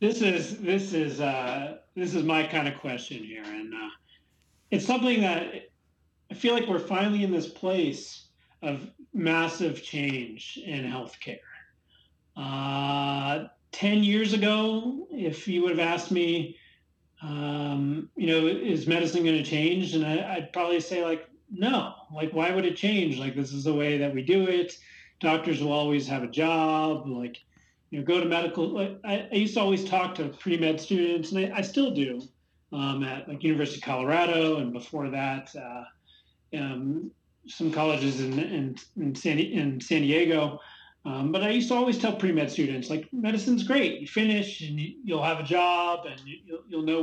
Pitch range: 140-190 Hz